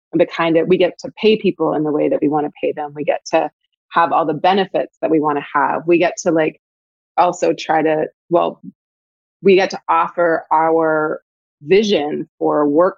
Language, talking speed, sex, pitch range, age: English, 210 wpm, female, 155-185 Hz, 20-39